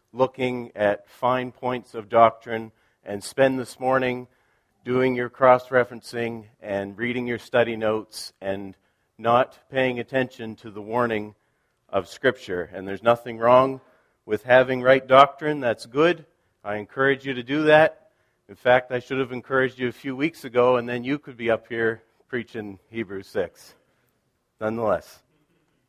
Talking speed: 150 wpm